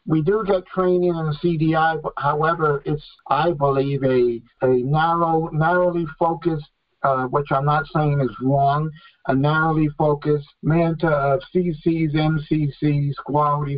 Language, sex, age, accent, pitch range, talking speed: English, male, 60-79, American, 135-165 Hz, 140 wpm